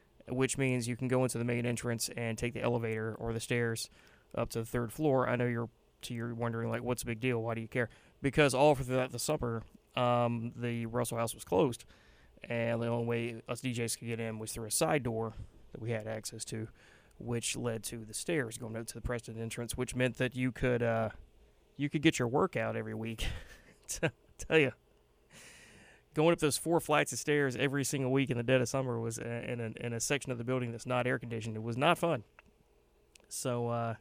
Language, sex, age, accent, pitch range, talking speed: English, male, 30-49, American, 115-135 Hz, 220 wpm